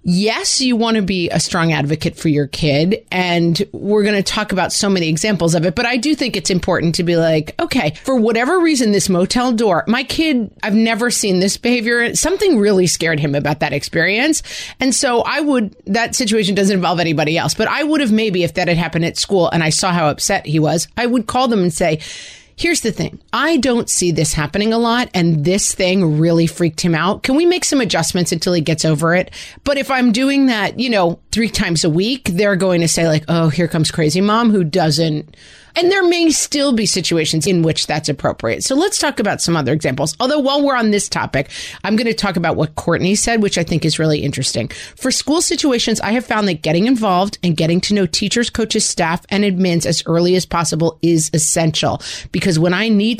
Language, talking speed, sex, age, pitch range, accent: English, 225 wpm, female, 30-49, 165-230 Hz, American